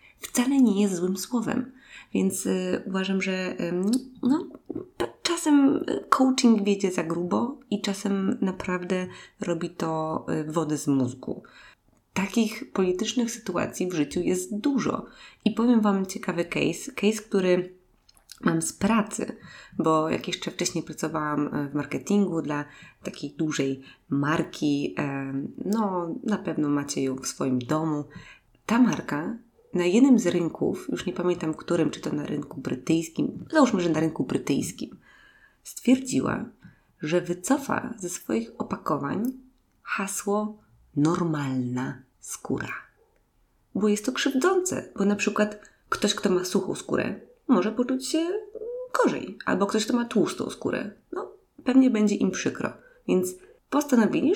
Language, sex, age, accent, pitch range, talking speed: Polish, female, 20-39, native, 165-255 Hz, 135 wpm